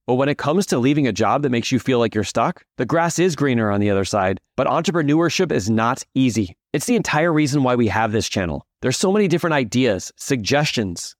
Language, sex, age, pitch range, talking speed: English, male, 30-49, 115-150 Hz, 230 wpm